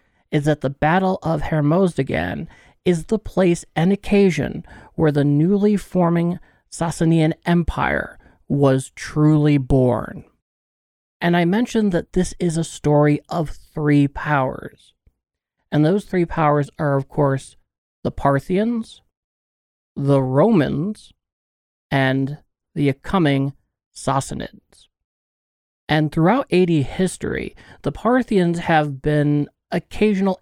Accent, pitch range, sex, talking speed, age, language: American, 140-175 Hz, male, 110 wpm, 40-59, English